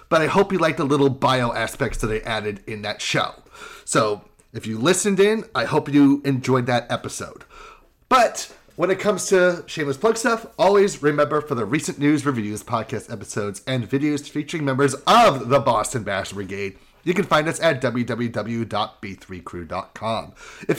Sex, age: male, 30-49